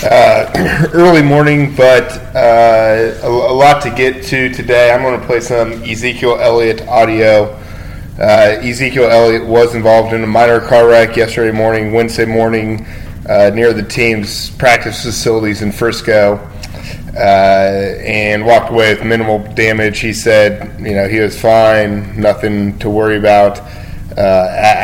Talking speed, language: 145 wpm, English